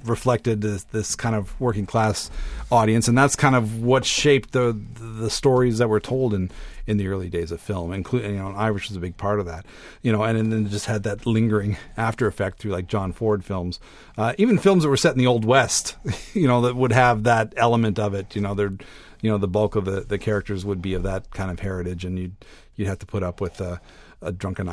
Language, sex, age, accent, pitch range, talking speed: English, male, 40-59, American, 95-120 Hz, 245 wpm